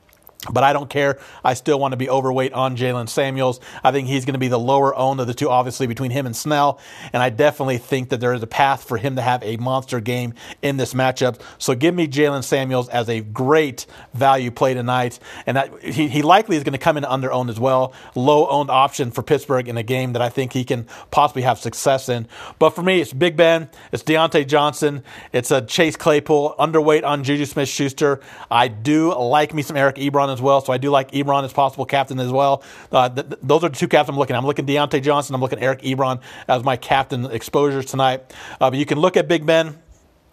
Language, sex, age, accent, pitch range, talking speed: English, male, 40-59, American, 130-145 Hz, 235 wpm